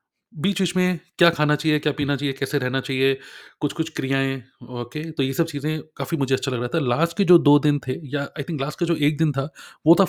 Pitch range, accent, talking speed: 130-160 Hz, native, 250 wpm